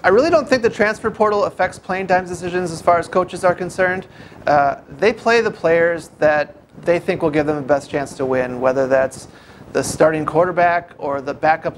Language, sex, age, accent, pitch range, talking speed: English, male, 30-49, American, 145-180 Hz, 210 wpm